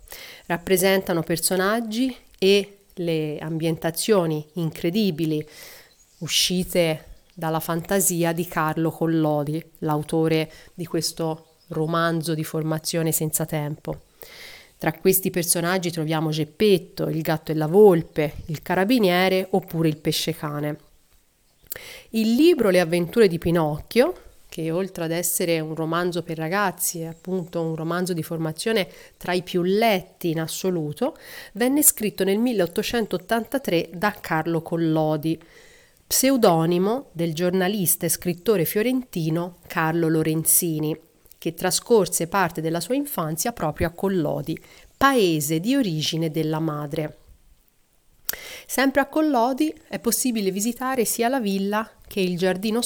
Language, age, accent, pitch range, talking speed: Italian, 30-49, native, 160-205 Hz, 115 wpm